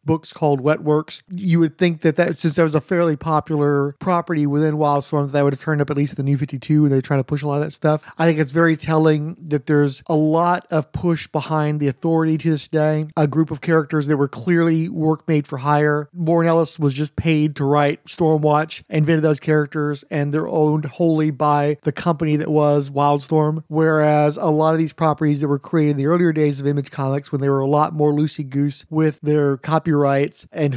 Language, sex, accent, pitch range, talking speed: English, male, American, 145-165 Hz, 230 wpm